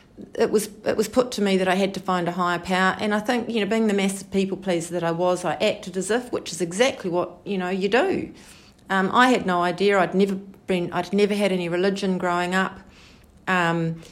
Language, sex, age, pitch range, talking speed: English, female, 40-59, 180-205 Hz, 240 wpm